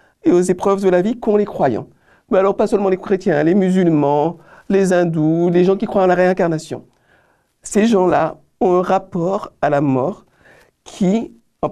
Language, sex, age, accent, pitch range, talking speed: French, male, 50-69, French, 160-200 Hz, 185 wpm